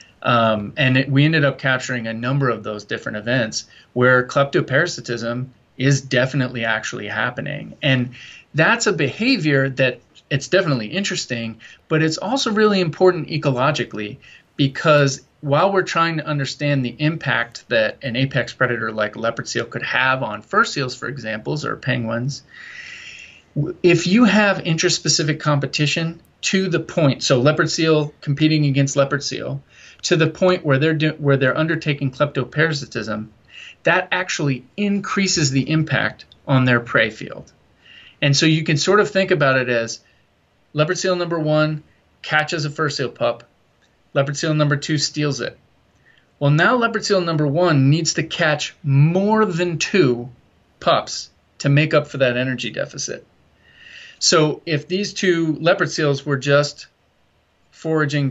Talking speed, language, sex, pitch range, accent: 150 wpm, English, male, 130-165 Hz, American